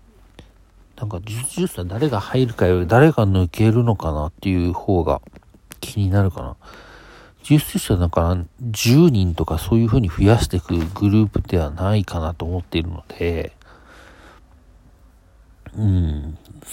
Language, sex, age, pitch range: Japanese, male, 50-69, 90-120 Hz